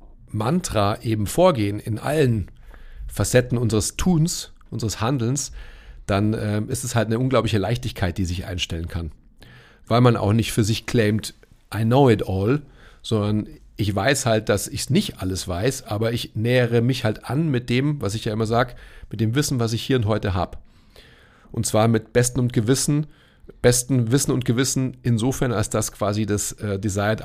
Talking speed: 180 wpm